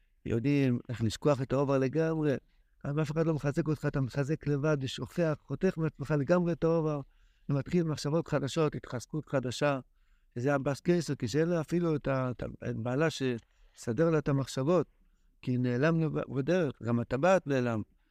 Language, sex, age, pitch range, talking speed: Hebrew, male, 60-79, 125-160 Hz, 150 wpm